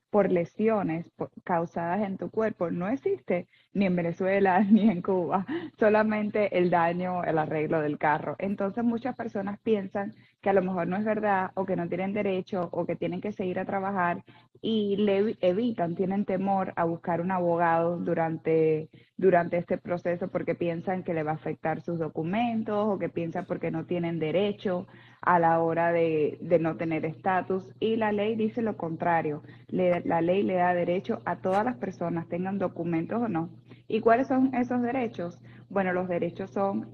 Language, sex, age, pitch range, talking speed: Spanish, female, 20-39, 170-200 Hz, 175 wpm